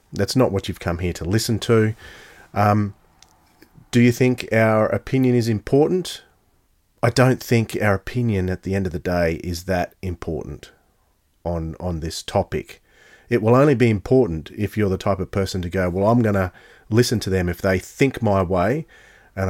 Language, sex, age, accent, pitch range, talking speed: English, male, 40-59, Australian, 90-120 Hz, 190 wpm